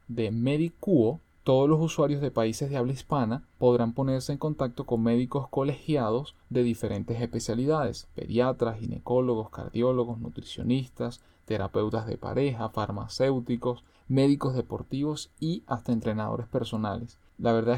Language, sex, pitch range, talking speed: Spanish, male, 115-135 Hz, 120 wpm